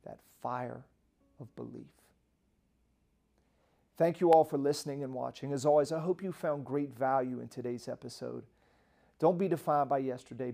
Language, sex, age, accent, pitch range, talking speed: English, male, 40-59, American, 130-160 Hz, 155 wpm